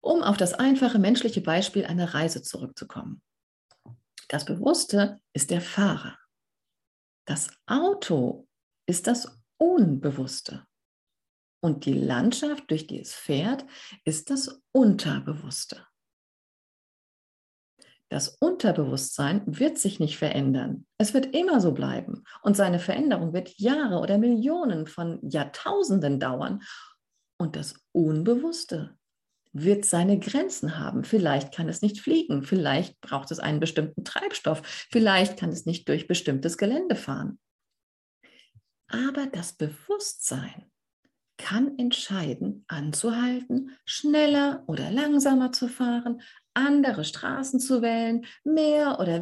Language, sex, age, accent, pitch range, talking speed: German, female, 50-69, German, 170-270 Hz, 115 wpm